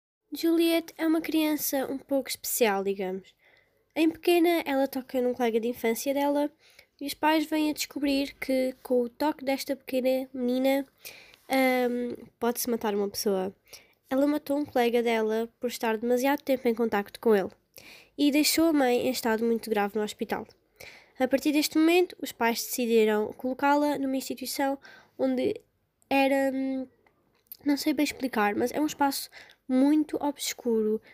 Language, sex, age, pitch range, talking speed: Portuguese, female, 10-29, 240-285 Hz, 150 wpm